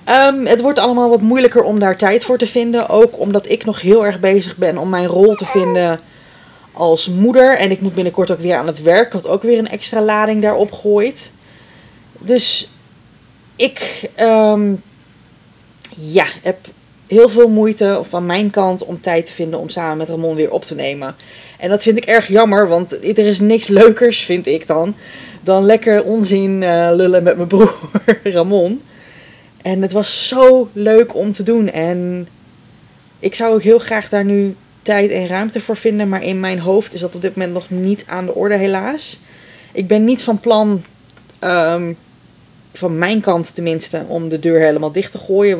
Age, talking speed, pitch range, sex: 30-49, 185 wpm, 175-215 Hz, female